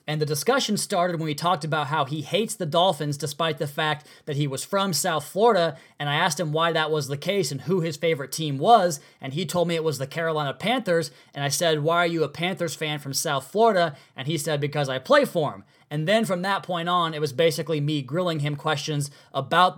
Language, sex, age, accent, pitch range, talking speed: English, male, 20-39, American, 150-180 Hz, 245 wpm